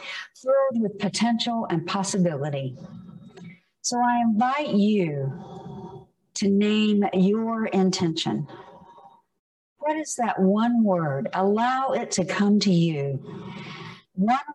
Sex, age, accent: female, 50-69, American